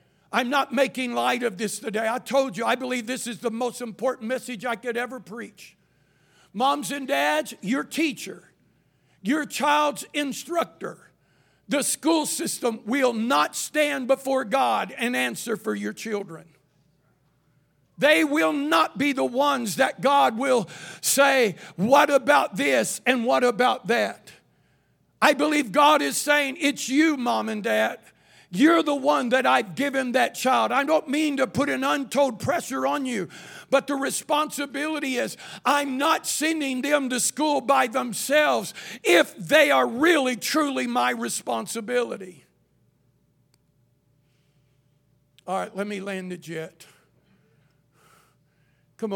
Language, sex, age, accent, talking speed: English, male, 60-79, American, 140 wpm